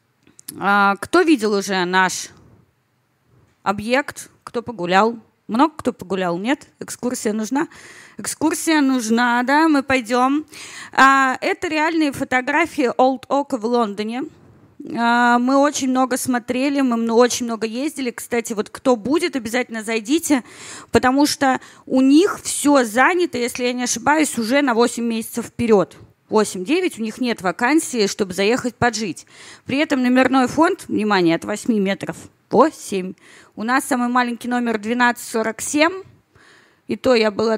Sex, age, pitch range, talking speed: female, 20-39, 215-270 Hz, 130 wpm